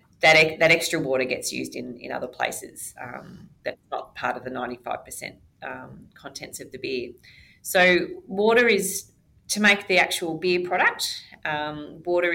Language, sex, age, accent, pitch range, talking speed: English, female, 30-49, Australian, 130-175 Hz, 160 wpm